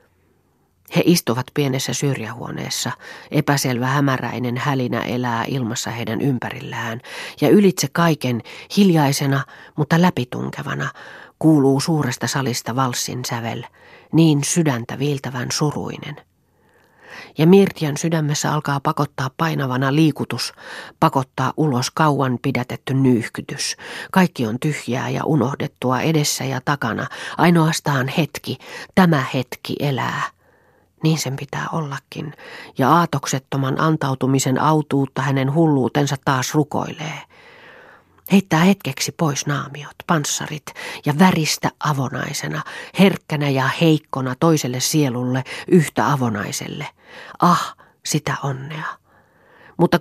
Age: 40-59